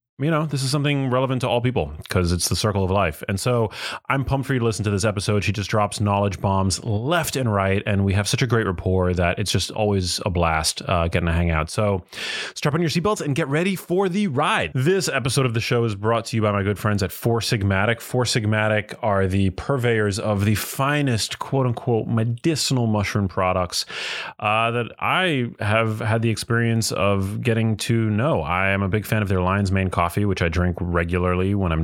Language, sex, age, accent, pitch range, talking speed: English, male, 30-49, American, 95-120 Hz, 225 wpm